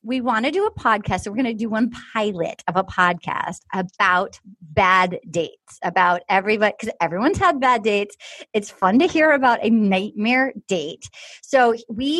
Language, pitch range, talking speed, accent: English, 210-275 Hz, 170 wpm, American